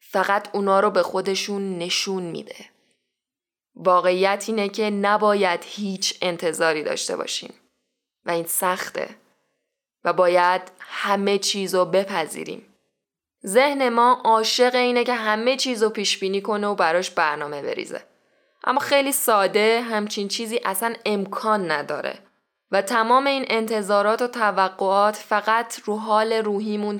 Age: 10-29